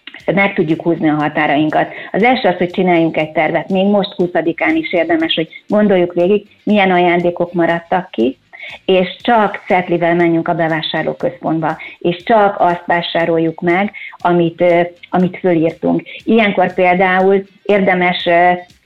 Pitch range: 165-190 Hz